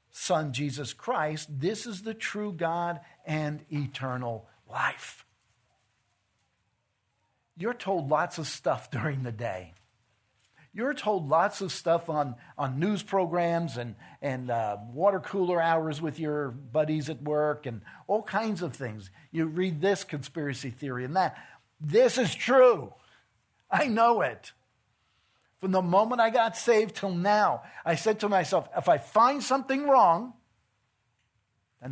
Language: English